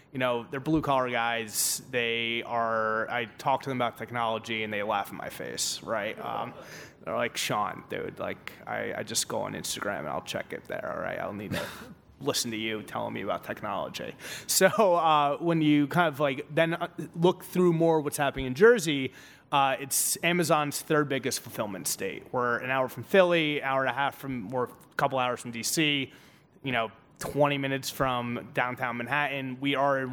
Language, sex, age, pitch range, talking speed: English, male, 30-49, 120-150 Hz, 200 wpm